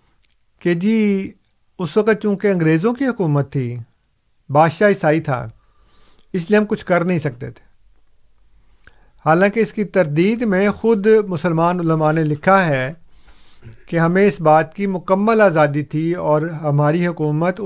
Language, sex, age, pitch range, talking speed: Urdu, male, 50-69, 145-185 Hz, 145 wpm